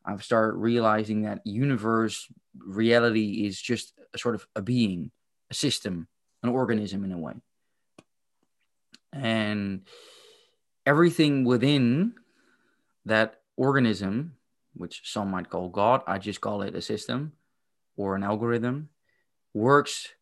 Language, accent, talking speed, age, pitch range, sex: English, Dutch, 120 wpm, 20-39, 105-130 Hz, male